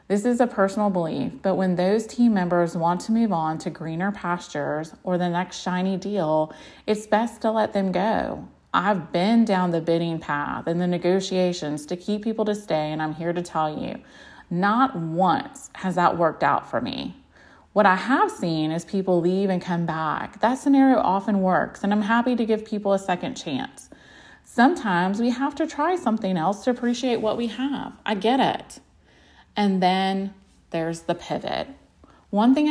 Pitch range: 170-220 Hz